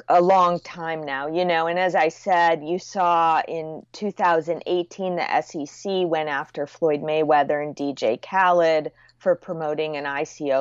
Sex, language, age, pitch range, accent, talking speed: female, English, 30-49, 140-175 Hz, American, 155 wpm